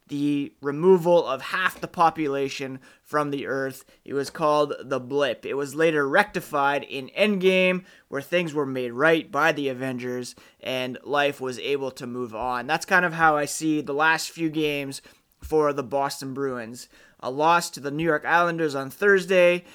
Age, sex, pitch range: 30-49, male, 140-170 Hz